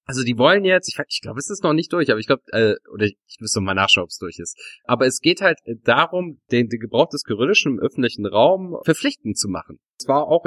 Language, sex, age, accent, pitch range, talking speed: German, male, 30-49, German, 105-140 Hz, 265 wpm